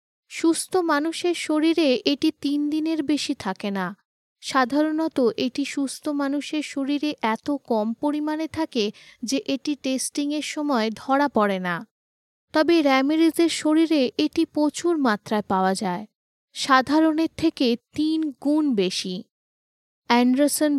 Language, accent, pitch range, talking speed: Bengali, native, 245-300 Hz, 115 wpm